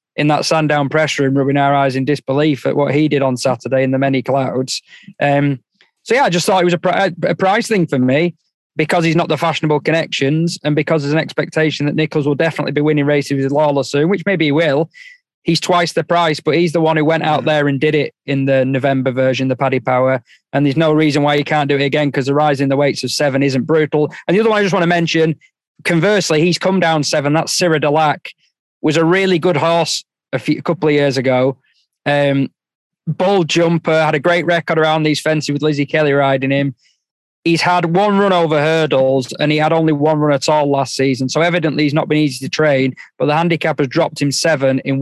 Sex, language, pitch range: male, English, 140-165 Hz